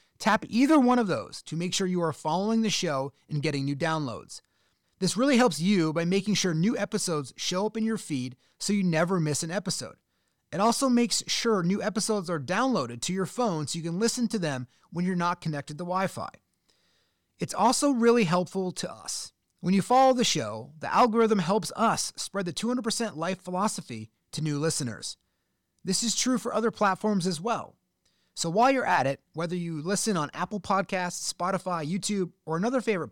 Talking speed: 195 wpm